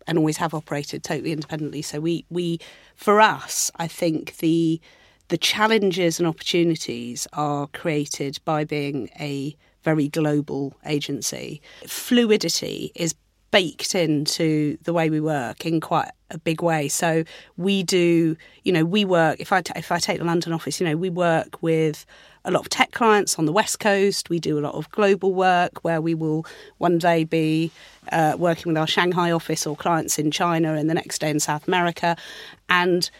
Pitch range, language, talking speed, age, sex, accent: 155-180 Hz, English, 180 wpm, 40-59, female, British